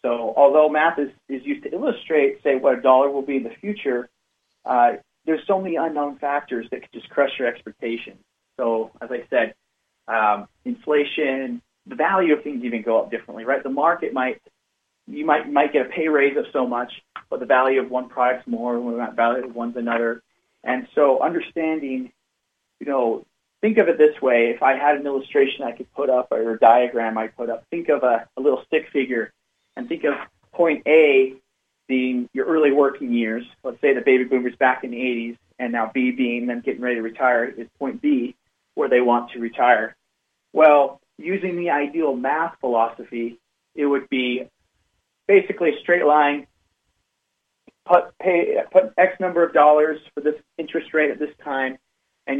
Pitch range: 120-160 Hz